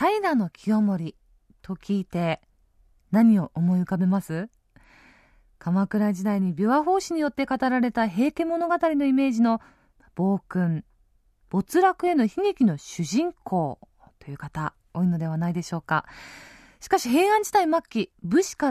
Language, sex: Japanese, female